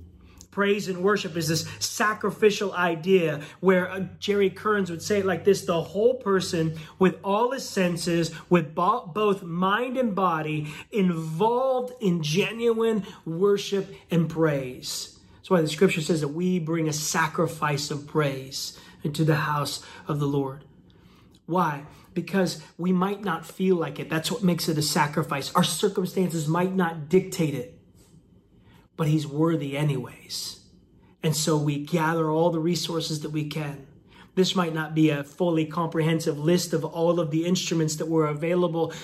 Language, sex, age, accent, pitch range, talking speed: English, male, 30-49, American, 160-195 Hz, 155 wpm